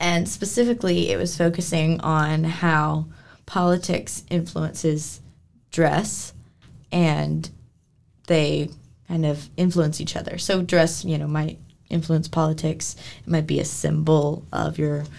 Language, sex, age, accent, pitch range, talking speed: English, female, 20-39, American, 150-175 Hz, 125 wpm